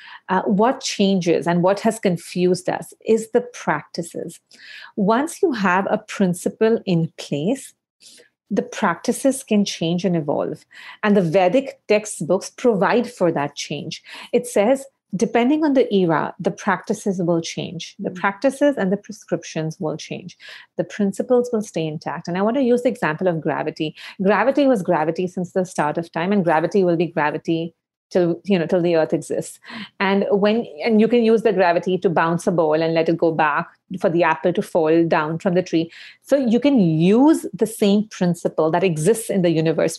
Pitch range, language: 170-225 Hz, English